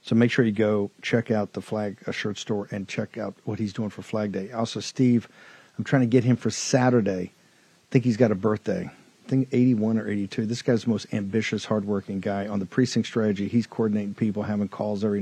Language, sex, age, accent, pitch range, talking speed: English, male, 50-69, American, 105-130 Hz, 230 wpm